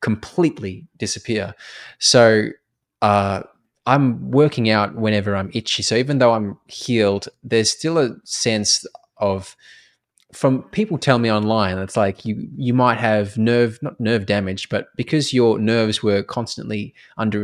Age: 20-39